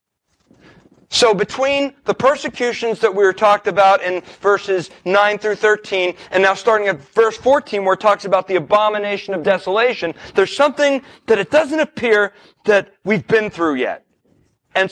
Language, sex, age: English, male, 40-59